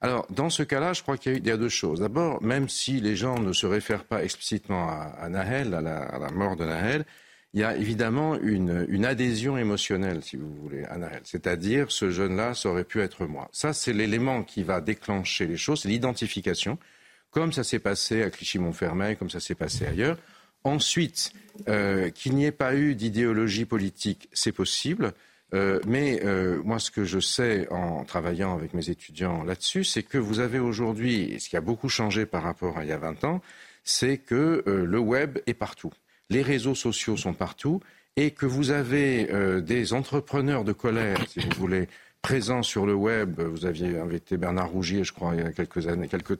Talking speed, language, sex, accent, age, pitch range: 200 wpm, French, male, French, 50-69, 95-135 Hz